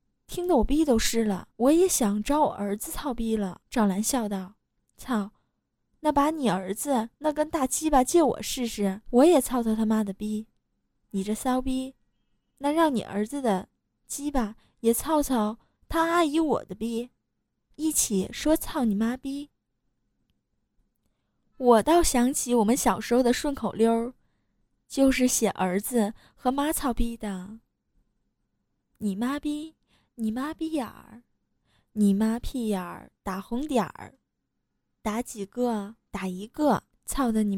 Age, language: 10-29, Chinese